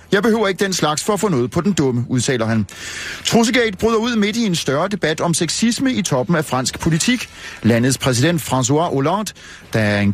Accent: native